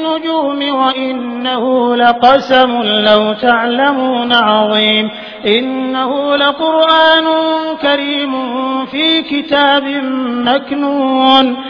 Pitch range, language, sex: 260-320 Hz, English, male